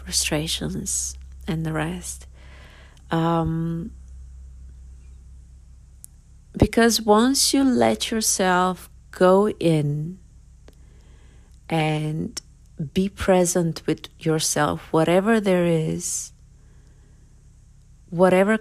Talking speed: 70 wpm